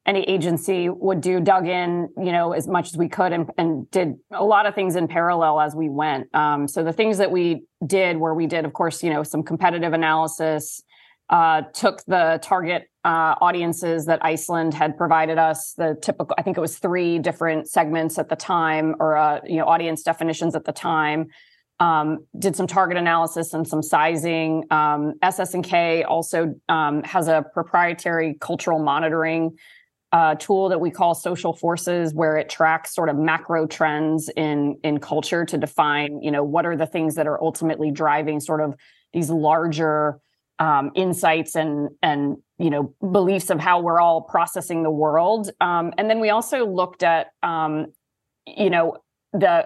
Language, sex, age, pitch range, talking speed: English, female, 20-39, 155-180 Hz, 180 wpm